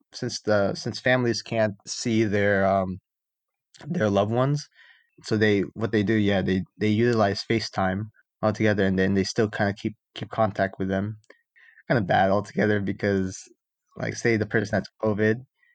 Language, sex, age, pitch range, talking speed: English, male, 20-39, 95-115 Hz, 170 wpm